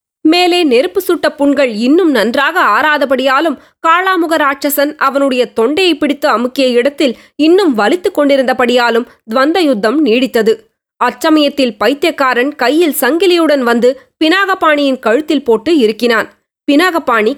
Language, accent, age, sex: Tamil, native, 20-39, female